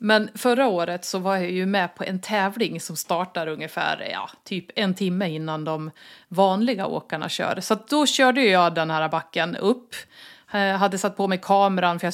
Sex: female